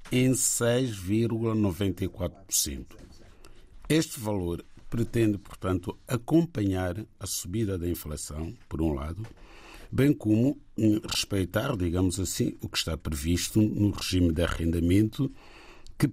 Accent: Brazilian